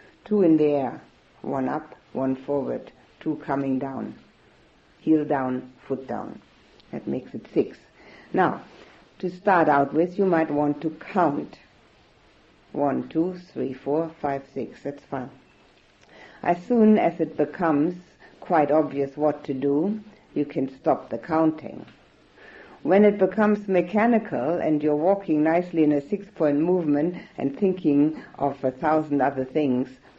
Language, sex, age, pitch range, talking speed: English, female, 60-79, 140-175 Hz, 145 wpm